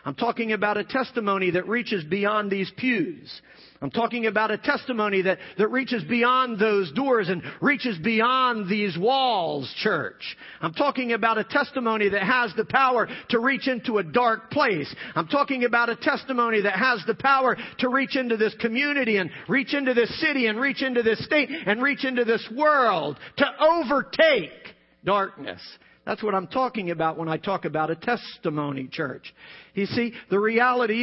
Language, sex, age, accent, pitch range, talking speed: English, male, 50-69, American, 205-265 Hz, 175 wpm